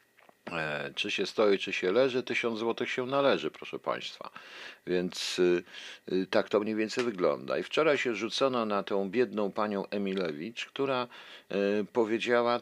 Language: Polish